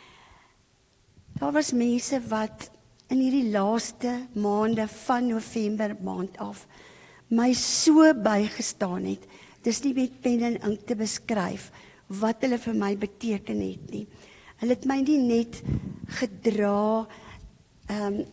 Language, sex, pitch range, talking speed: English, female, 200-250 Hz, 120 wpm